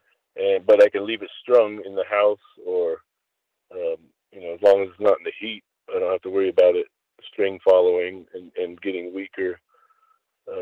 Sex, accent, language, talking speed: male, American, English, 205 wpm